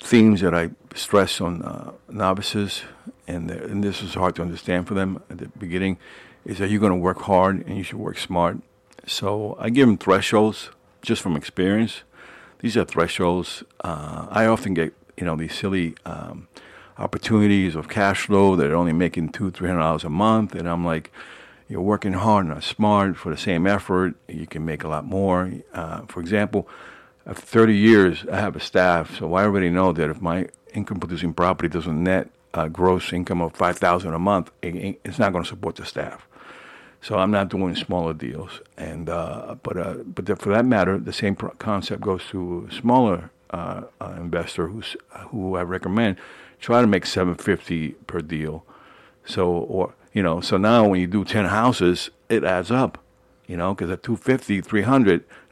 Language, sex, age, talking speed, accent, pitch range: English, male, 50-69, 190 wpm, American, 85-105 Hz